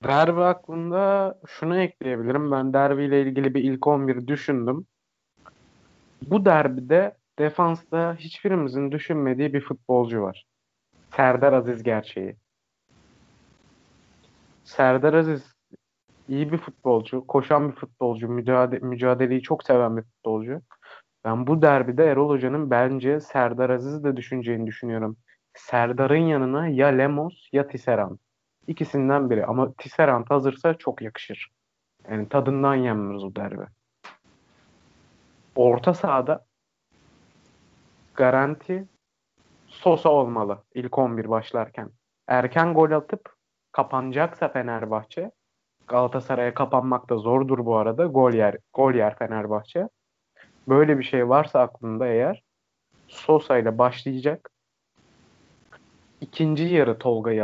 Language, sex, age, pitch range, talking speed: Turkish, male, 30-49, 120-150 Hz, 105 wpm